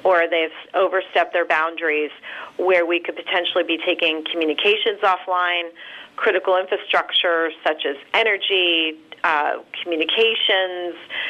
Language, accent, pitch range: English, American, 170-195 Hz